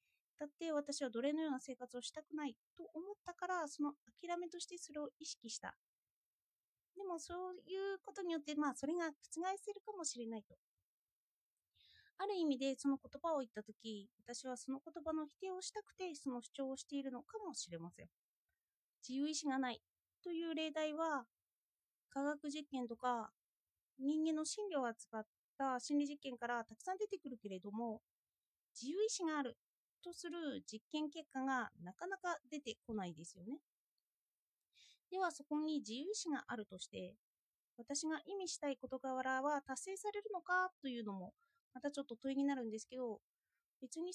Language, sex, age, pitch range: Japanese, female, 30-49, 245-340 Hz